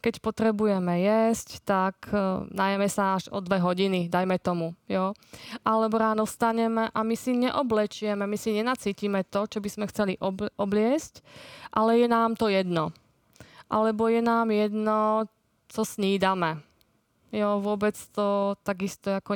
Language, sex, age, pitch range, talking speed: Czech, female, 20-39, 195-225 Hz, 145 wpm